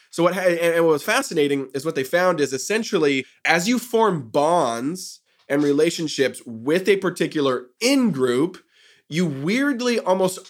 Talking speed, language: 145 wpm, English